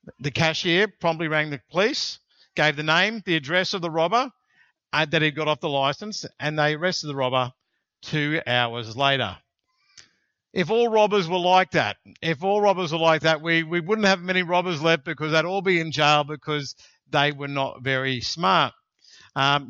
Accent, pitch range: Australian, 155-205 Hz